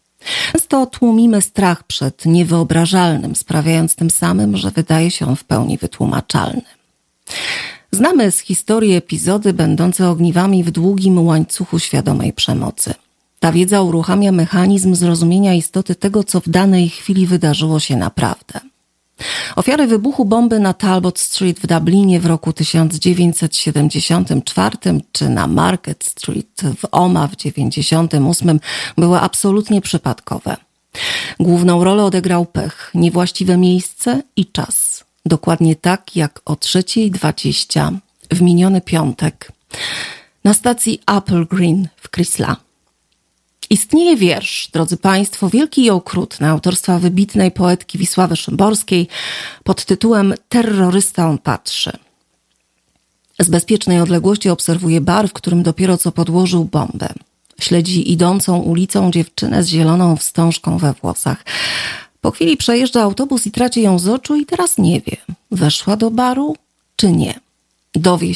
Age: 40-59